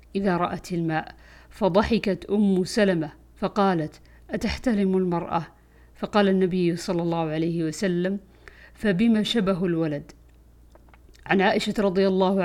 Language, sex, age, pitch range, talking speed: Arabic, female, 50-69, 175-205 Hz, 105 wpm